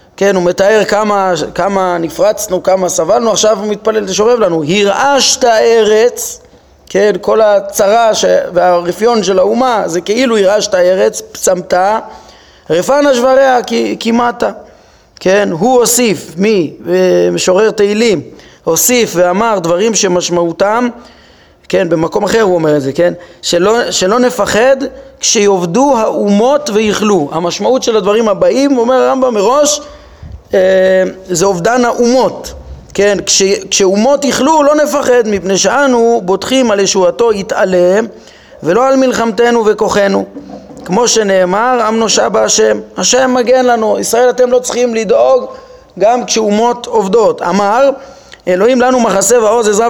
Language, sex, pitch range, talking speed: Hebrew, male, 195-255 Hz, 125 wpm